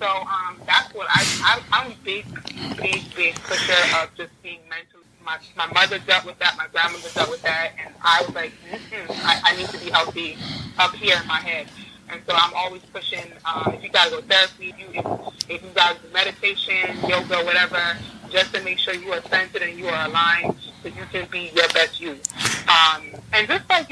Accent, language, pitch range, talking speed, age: American, English, 170-200 Hz, 230 wpm, 20-39